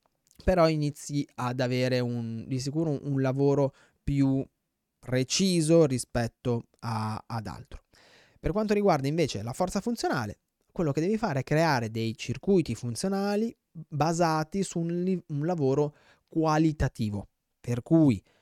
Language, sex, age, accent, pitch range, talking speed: Italian, male, 20-39, native, 115-145 Hz, 125 wpm